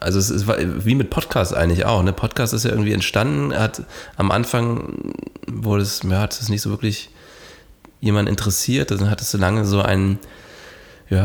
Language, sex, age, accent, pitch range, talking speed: German, male, 30-49, German, 90-105 Hz, 190 wpm